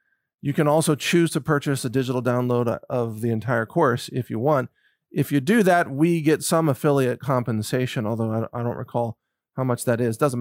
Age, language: 40-59, English